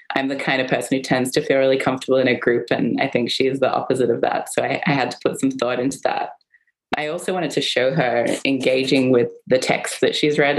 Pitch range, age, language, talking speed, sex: 130-150 Hz, 20-39, English, 260 wpm, female